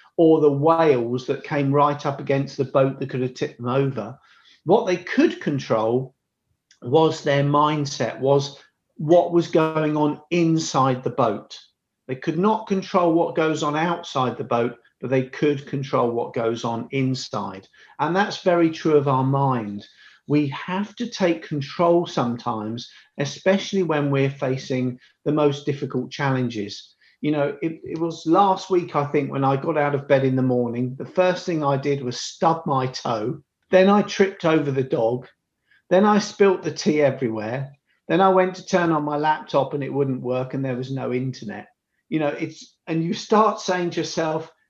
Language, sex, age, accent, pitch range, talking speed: English, male, 40-59, British, 135-170 Hz, 180 wpm